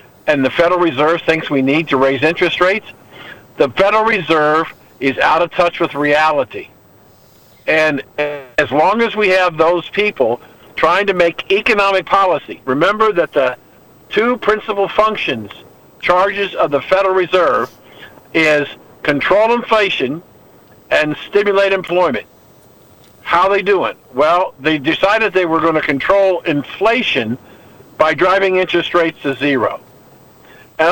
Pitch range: 155-200 Hz